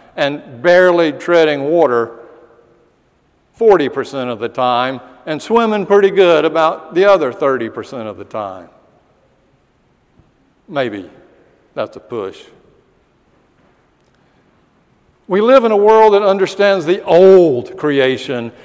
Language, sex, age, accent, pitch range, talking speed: English, male, 60-79, American, 150-200 Hz, 105 wpm